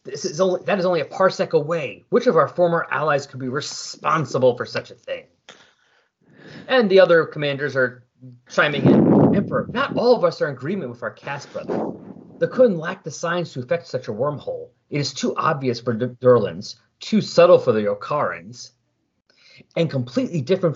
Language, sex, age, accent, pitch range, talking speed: English, male, 30-49, American, 130-185 Hz, 190 wpm